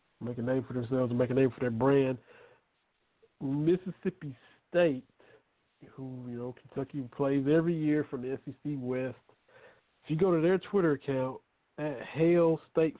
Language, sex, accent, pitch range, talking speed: English, male, American, 130-160 Hz, 160 wpm